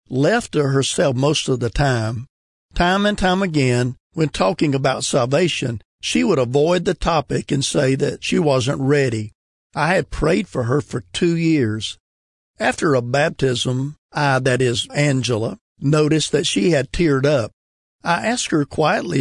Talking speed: 160 wpm